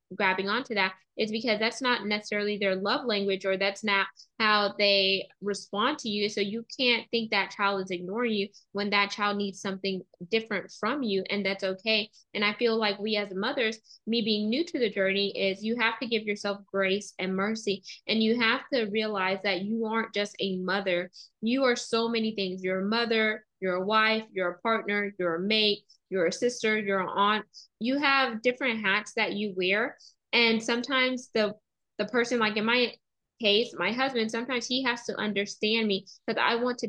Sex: female